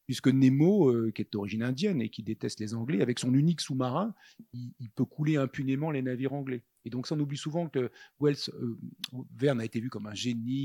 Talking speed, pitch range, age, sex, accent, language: 225 wpm, 115-145 Hz, 40-59, male, French, French